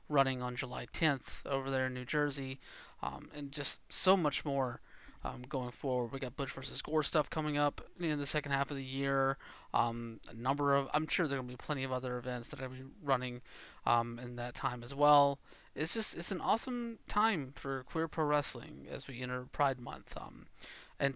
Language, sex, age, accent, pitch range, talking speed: English, male, 30-49, American, 130-155 Hz, 205 wpm